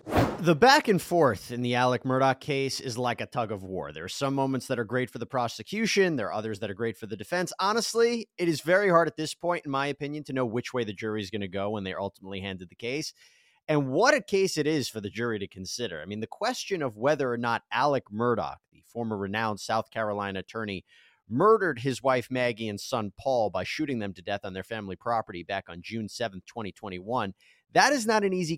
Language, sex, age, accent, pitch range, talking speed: English, male, 30-49, American, 110-175 Hz, 240 wpm